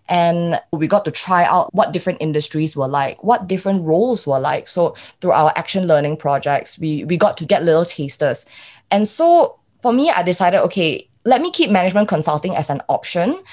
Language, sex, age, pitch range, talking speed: English, female, 20-39, 155-205 Hz, 195 wpm